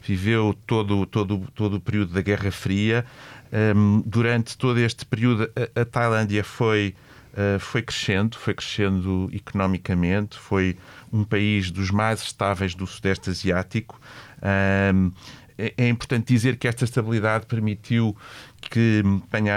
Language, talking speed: Portuguese, 135 wpm